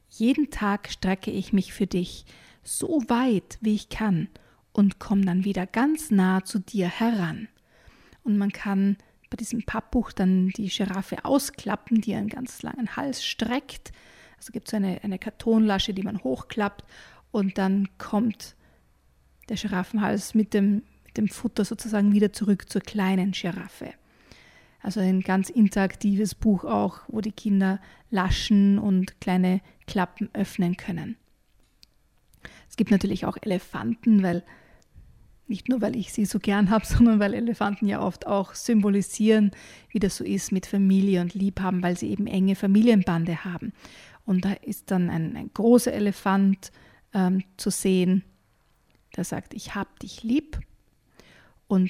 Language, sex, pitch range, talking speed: German, female, 190-220 Hz, 150 wpm